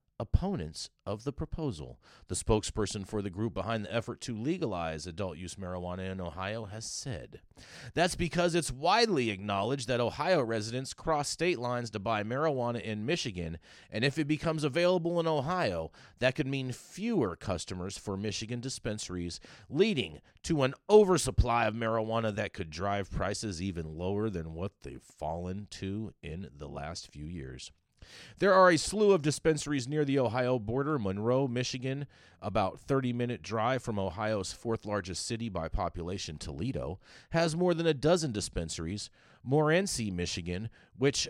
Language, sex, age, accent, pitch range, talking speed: English, male, 30-49, American, 95-140 Hz, 155 wpm